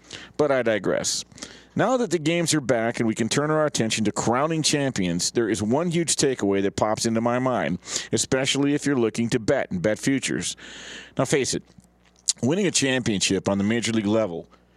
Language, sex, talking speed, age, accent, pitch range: English, male, 195 wpm, 50-69, American, 115-160 Hz